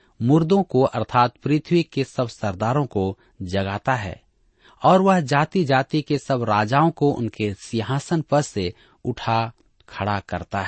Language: Hindi